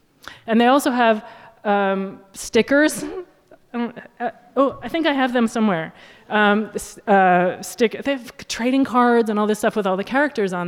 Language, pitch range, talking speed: English, 175-220 Hz, 165 wpm